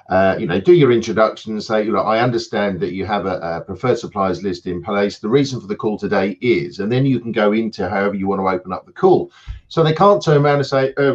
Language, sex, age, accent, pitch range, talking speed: English, male, 40-59, British, 115-175 Hz, 275 wpm